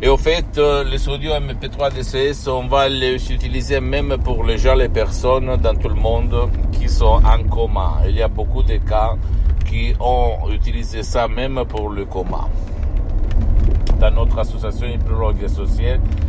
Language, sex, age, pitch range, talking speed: Italian, male, 60-79, 80-120 Hz, 170 wpm